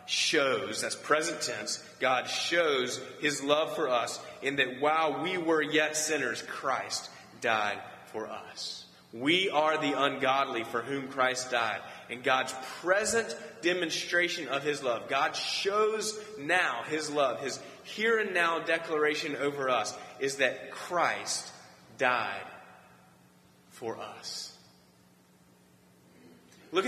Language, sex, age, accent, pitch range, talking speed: English, male, 30-49, American, 90-150 Hz, 125 wpm